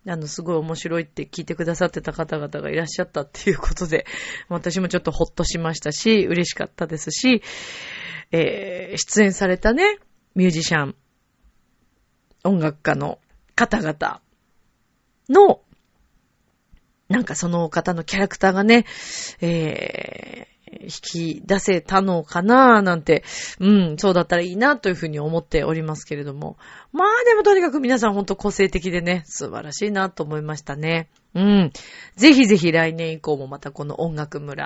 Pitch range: 160-210 Hz